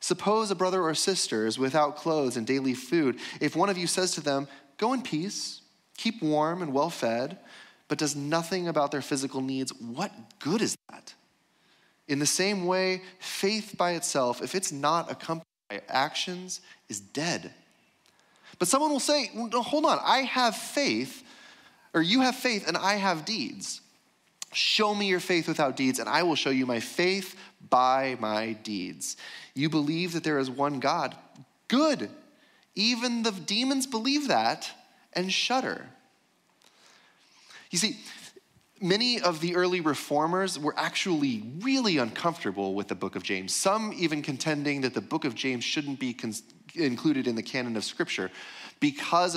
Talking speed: 160 wpm